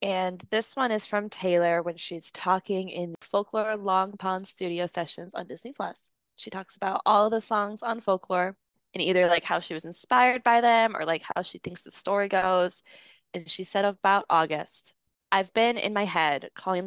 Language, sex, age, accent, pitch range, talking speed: English, female, 20-39, American, 175-205 Hz, 195 wpm